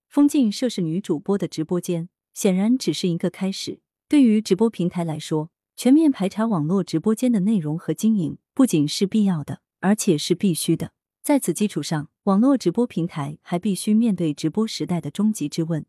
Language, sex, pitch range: Chinese, female, 160-215 Hz